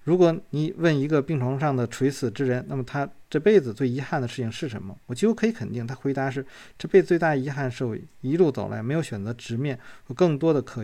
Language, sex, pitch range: Chinese, male, 120-155 Hz